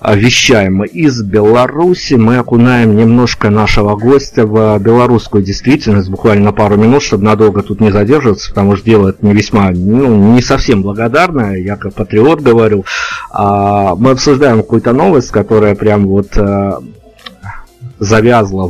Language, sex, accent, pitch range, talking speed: Russian, male, native, 105-120 Hz, 135 wpm